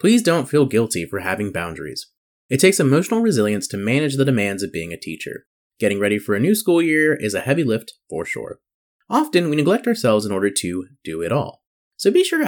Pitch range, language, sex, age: 100-155 Hz, English, male, 30-49